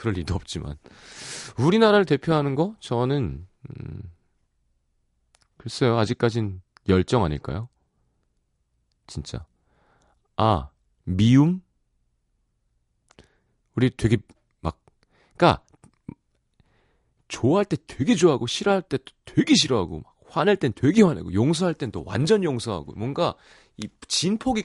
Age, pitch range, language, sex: 40-59, 90-145 Hz, Korean, male